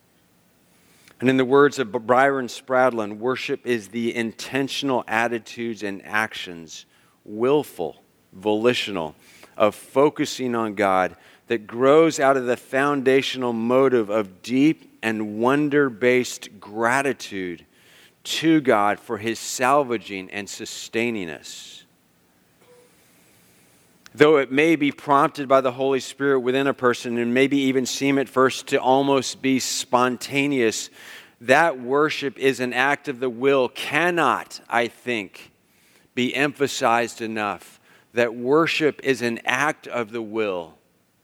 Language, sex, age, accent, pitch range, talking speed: English, male, 40-59, American, 110-135 Hz, 120 wpm